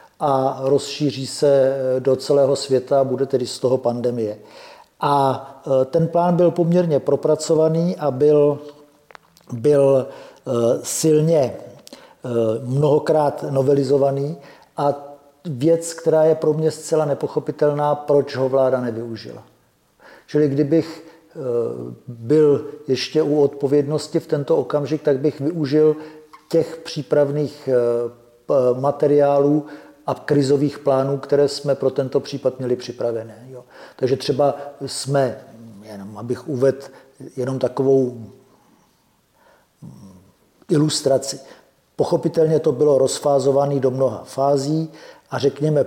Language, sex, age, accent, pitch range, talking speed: Czech, male, 50-69, native, 130-150 Hz, 100 wpm